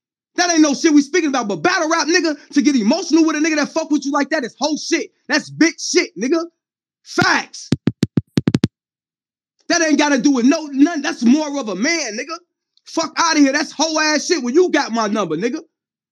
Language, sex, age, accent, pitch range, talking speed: English, male, 30-49, American, 275-335 Hz, 225 wpm